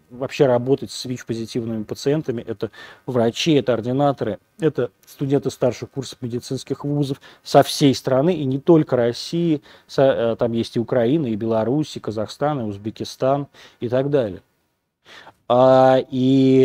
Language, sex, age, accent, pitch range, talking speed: Russian, male, 20-39, native, 115-145 Hz, 135 wpm